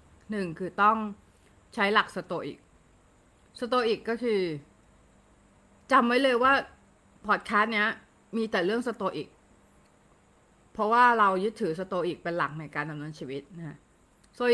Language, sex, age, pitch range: Thai, female, 20-39, 185-240 Hz